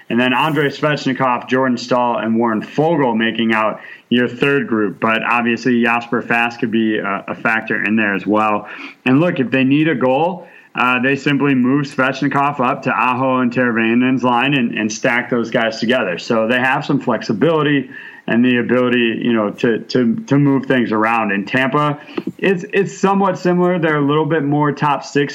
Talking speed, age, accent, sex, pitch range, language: 190 wpm, 30-49, American, male, 120-140 Hz, English